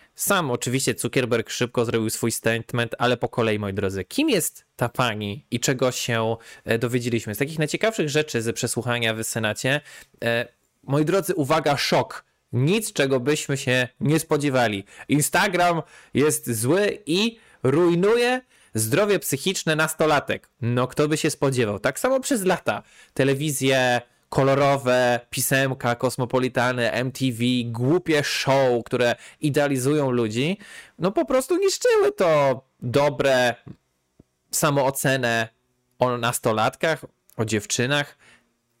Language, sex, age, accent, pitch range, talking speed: Polish, male, 20-39, native, 115-145 Hz, 120 wpm